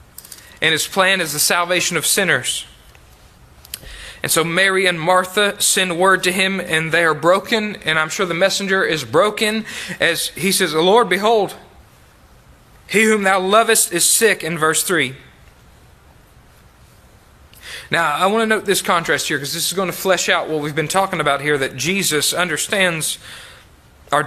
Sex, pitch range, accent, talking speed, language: male, 160-195 Hz, American, 170 wpm, English